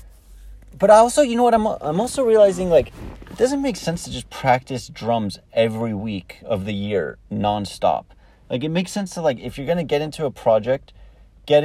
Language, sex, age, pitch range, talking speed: English, male, 30-49, 100-135 Hz, 200 wpm